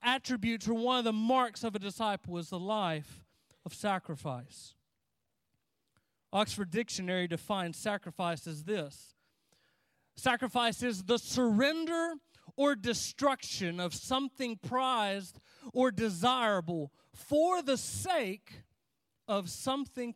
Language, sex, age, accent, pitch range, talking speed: English, male, 40-59, American, 200-275 Hz, 105 wpm